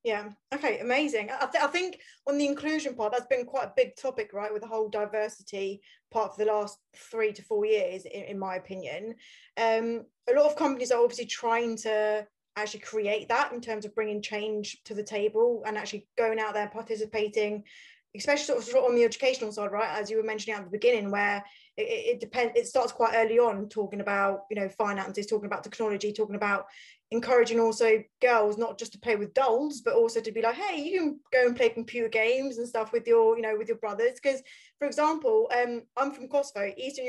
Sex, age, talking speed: female, 20-39, 215 wpm